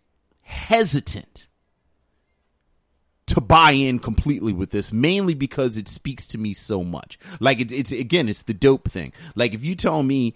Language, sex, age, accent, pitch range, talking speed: English, male, 30-49, American, 100-130 Hz, 160 wpm